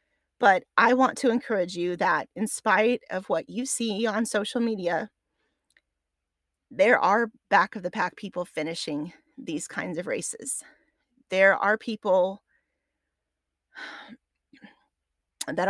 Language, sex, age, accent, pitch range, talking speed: English, female, 30-49, American, 175-245 Hz, 120 wpm